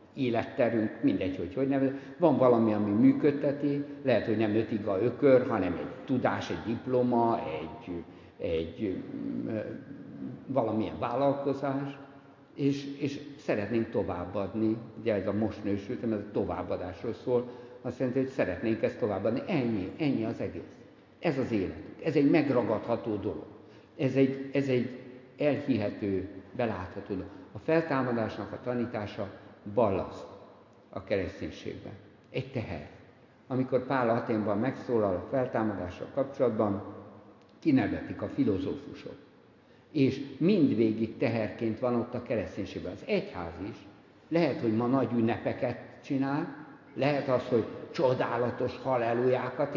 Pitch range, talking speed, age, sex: 105-140 Hz, 120 wpm, 60-79, male